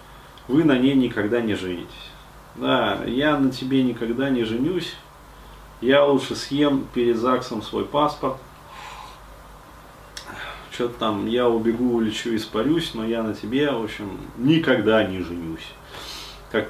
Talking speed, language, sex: 130 wpm, Russian, male